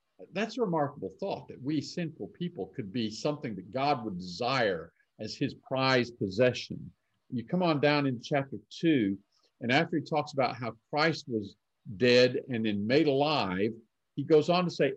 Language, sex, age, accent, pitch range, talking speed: English, male, 50-69, American, 130-165 Hz, 175 wpm